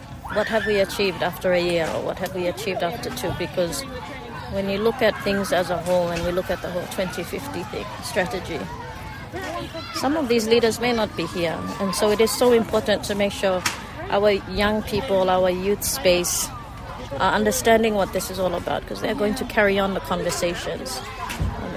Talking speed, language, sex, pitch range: 195 wpm, English, female, 175-200 Hz